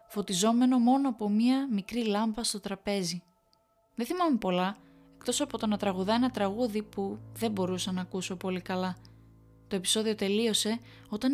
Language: Greek